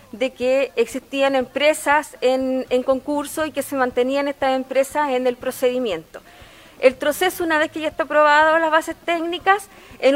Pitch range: 265-320 Hz